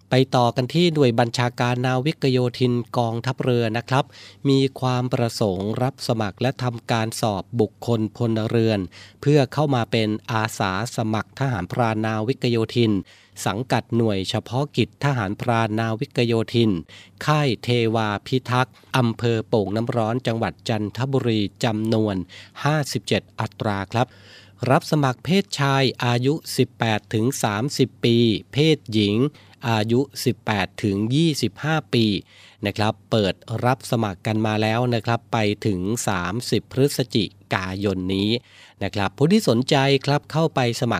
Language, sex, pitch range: Thai, male, 105-130 Hz